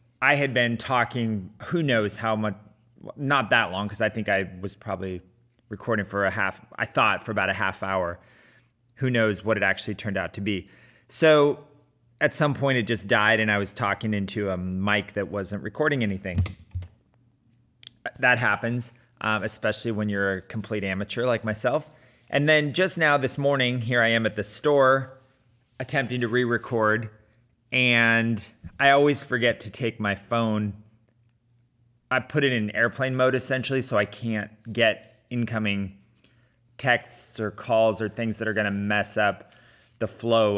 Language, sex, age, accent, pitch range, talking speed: English, male, 30-49, American, 105-125 Hz, 165 wpm